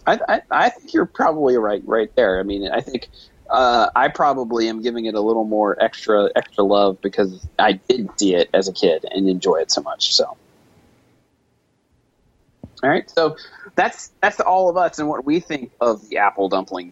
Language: English